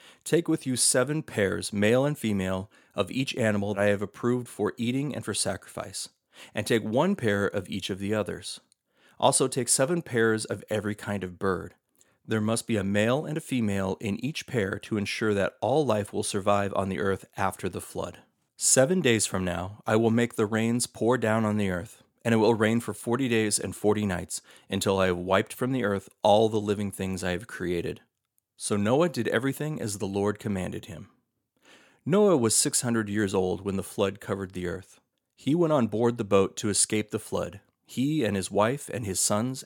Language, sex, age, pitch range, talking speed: English, male, 30-49, 100-120 Hz, 205 wpm